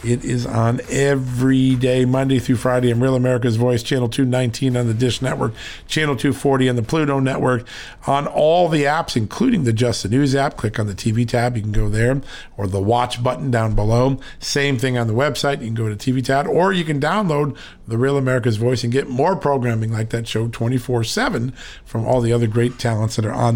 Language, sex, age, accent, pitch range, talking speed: English, male, 50-69, American, 115-140 Hz, 215 wpm